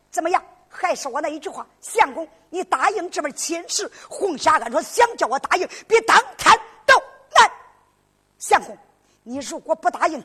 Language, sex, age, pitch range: Chinese, female, 50-69, 300-445 Hz